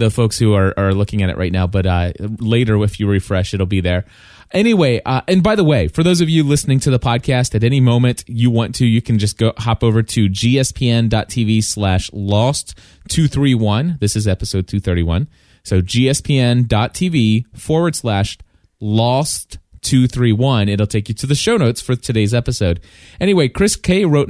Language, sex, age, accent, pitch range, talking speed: English, male, 30-49, American, 105-135 Hz, 185 wpm